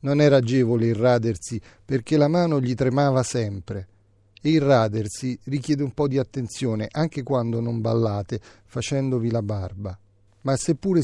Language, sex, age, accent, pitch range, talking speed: Italian, male, 40-59, native, 110-150 Hz, 140 wpm